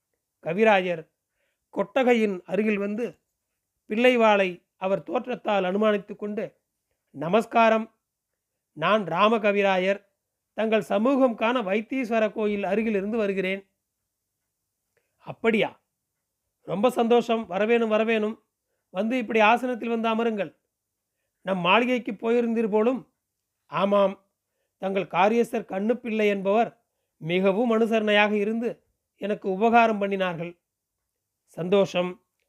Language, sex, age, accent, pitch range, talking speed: Tamil, male, 40-59, native, 185-230 Hz, 85 wpm